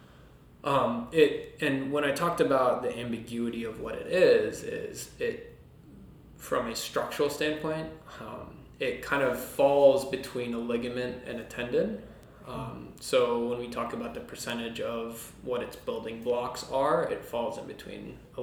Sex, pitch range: male, 115-150 Hz